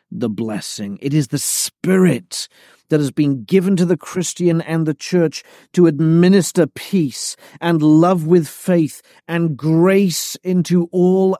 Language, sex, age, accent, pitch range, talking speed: English, male, 40-59, British, 140-185 Hz, 140 wpm